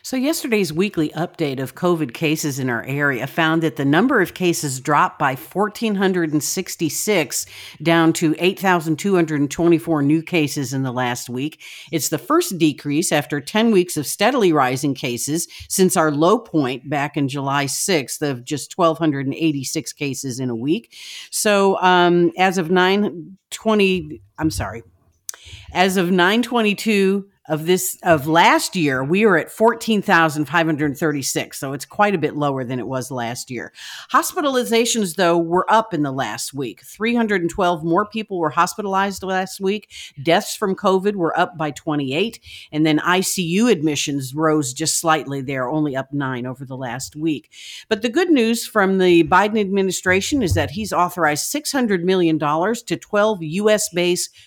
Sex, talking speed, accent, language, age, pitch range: female, 150 wpm, American, English, 50-69, 145-195 Hz